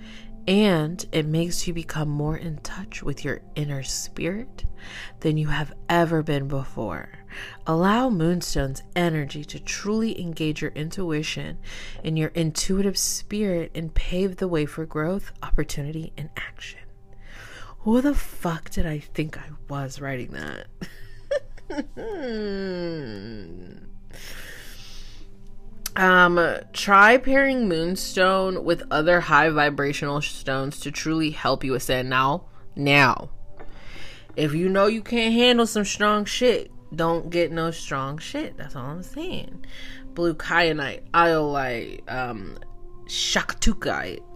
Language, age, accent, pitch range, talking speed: English, 30-49, American, 130-180 Hz, 120 wpm